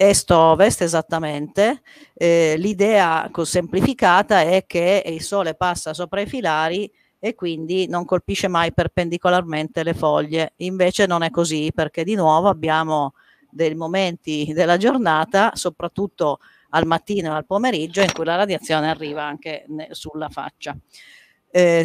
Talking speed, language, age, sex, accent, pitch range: 130 wpm, Italian, 50-69, female, native, 155-190 Hz